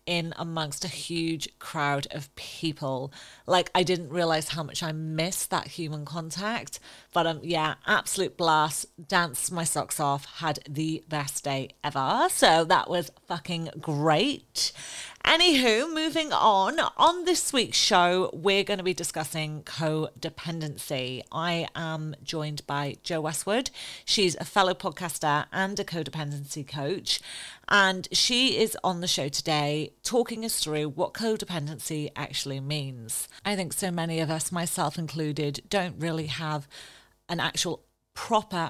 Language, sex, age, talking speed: English, female, 30-49, 140 wpm